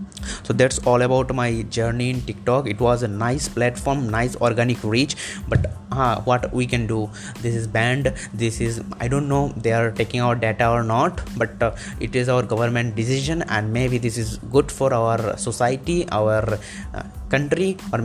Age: 20-39